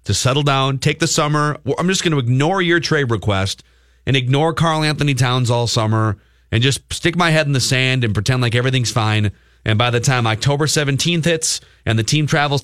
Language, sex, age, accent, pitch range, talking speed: English, male, 30-49, American, 105-150 Hz, 215 wpm